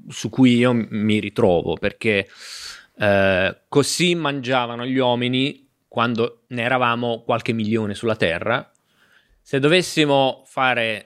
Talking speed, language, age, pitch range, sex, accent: 115 wpm, Italian, 30-49, 115-140 Hz, male, native